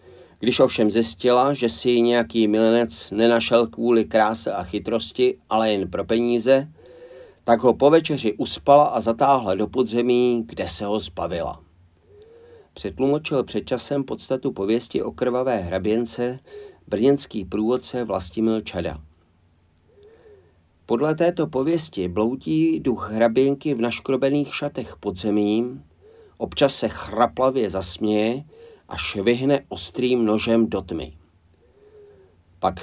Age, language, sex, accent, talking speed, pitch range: 40-59, Czech, male, native, 115 wpm, 105-130 Hz